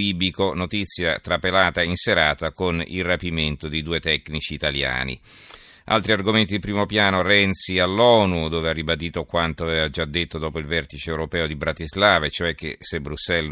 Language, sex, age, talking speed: Italian, male, 40-59, 155 wpm